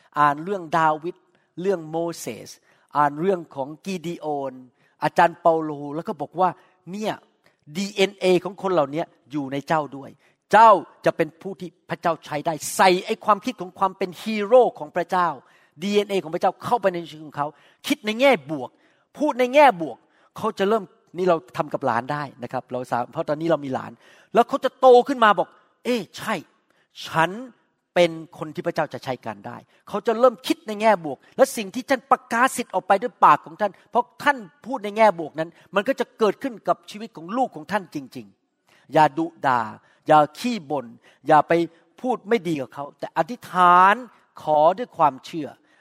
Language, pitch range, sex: Thai, 155-210 Hz, male